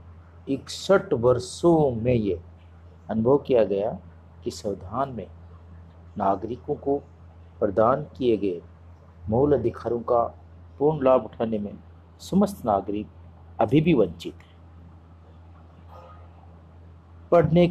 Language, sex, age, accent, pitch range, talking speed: Hindi, male, 50-69, native, 85-125 Hz, 95 wpm